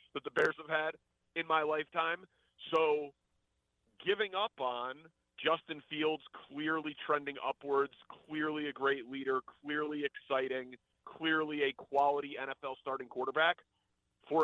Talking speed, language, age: 125 wpm, English, 30-49